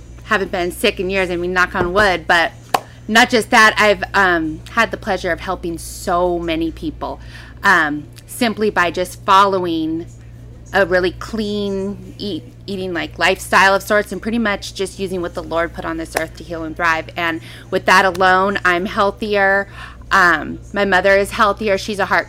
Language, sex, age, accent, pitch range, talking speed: English, female, 30-49, American, 165-195 Hz, 185 wpm